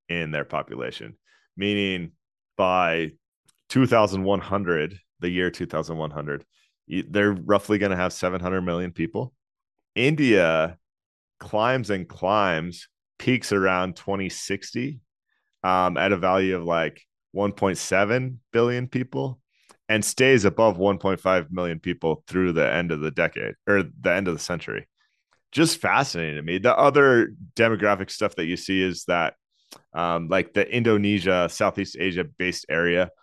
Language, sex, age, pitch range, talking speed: English, male, 30-49, 85-105 Hz, 130 wpm